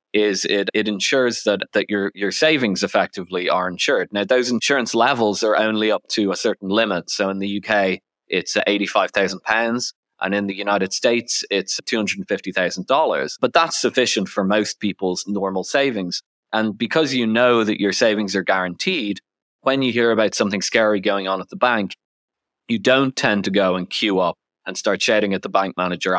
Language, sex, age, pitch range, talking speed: English, male, 20-39, 95-120 Hz, 180 wpm